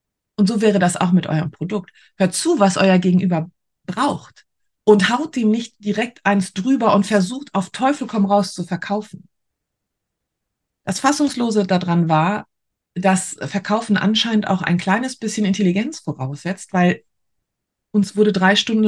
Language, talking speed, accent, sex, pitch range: German, 150 wpm, German, female, 165-205 Hz